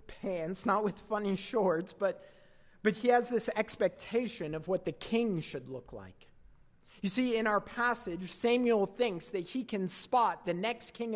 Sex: male